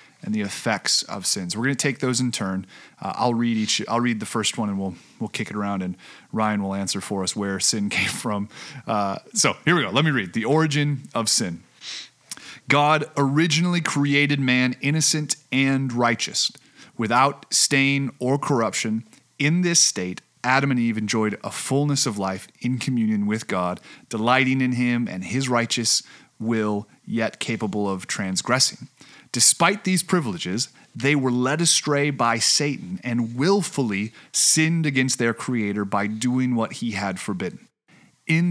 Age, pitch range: 30-49, 110-140 Hz